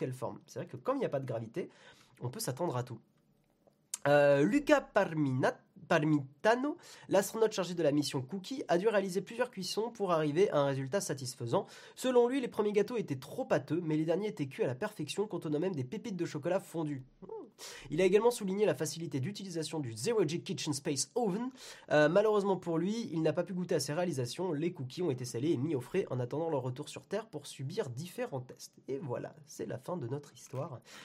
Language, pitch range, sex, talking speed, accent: French, 140-200 Hz, male, 215 wpm, French